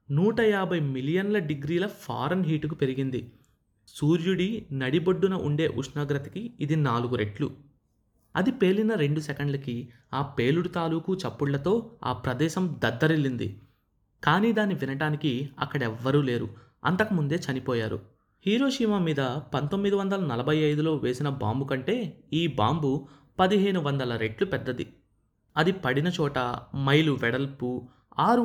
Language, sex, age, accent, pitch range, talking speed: Telugu, male, 20-39, native, 130-175 Hz, 105 wpm